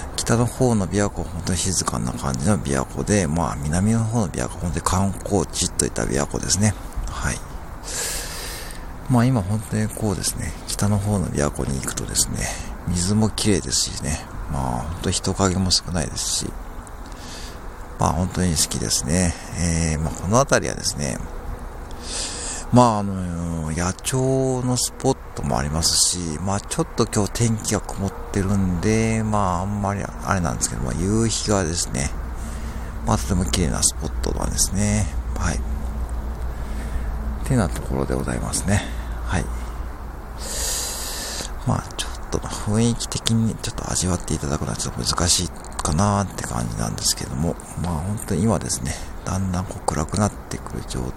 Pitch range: 75-100 Hz